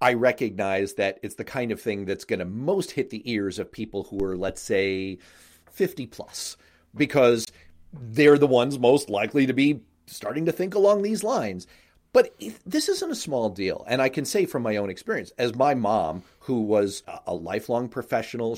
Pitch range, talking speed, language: 110-180 Hz, 185 wpm, English